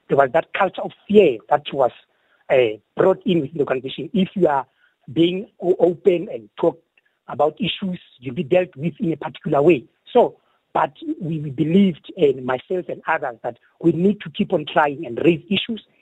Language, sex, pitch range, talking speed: English, male, 150-200 Hz, 185 wpm